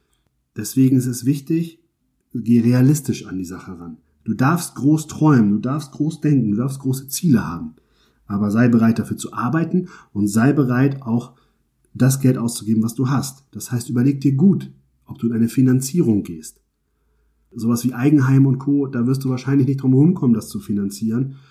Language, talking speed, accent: German, 185 wpm, German